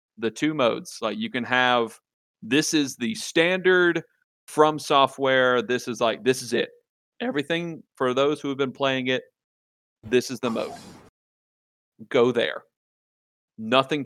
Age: 40-59